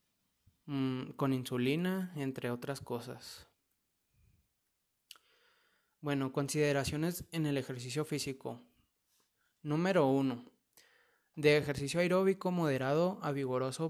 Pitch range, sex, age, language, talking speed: 135-155 Hz, male, 20-39, Spanish, 80 wpm